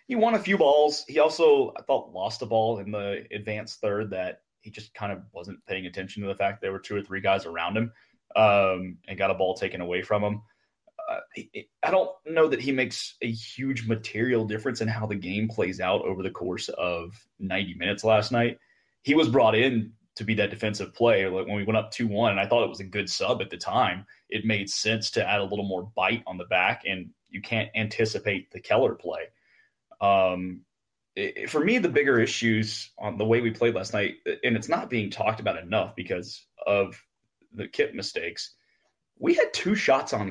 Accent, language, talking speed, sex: American, English, 215 wpm, male